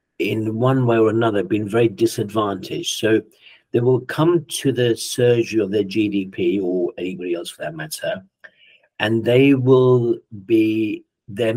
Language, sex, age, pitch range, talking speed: English, male, 60-79, 105-125 Hz, 150 wpm